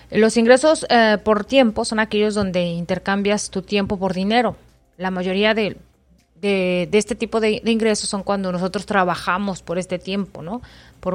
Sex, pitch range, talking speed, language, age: female, 175-215 Hz, 165 wpm, Spanish, 30-49